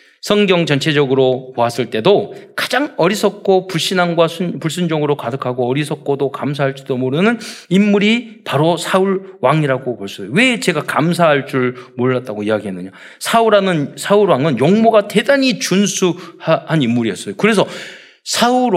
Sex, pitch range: male, 125-200 Hz